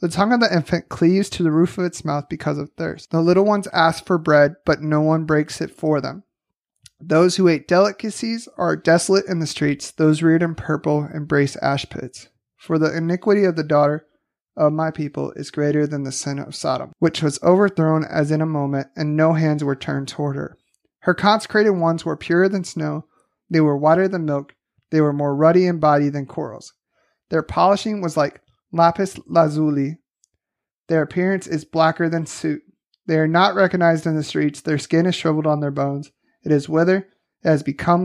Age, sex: 30-49, male